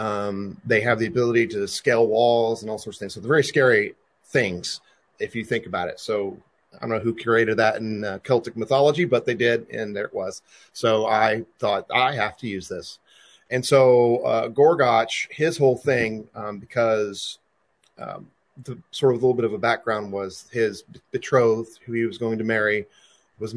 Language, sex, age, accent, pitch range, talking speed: English, male, 30-49, American, 105-120 Hz, 200 wpm